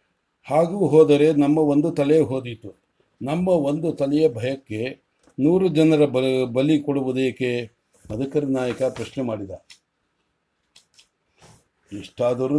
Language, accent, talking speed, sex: English, Indian, 85 wpm, male